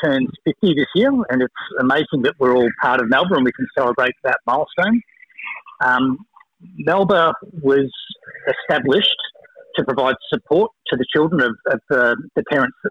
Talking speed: 160 wpm